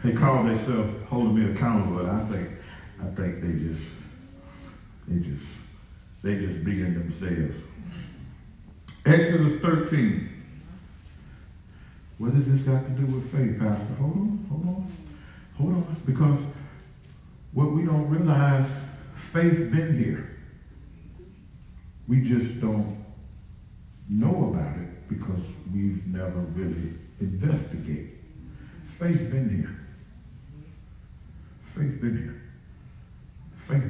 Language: English